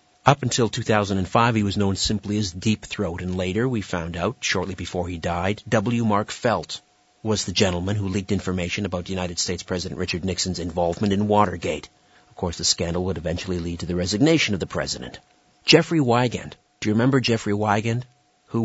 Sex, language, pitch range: male, English, 90-110 Hz